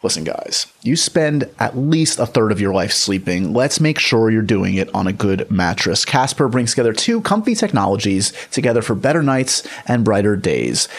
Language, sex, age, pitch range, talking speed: English, male, 30-49, 105-145 Hz, 190 wpm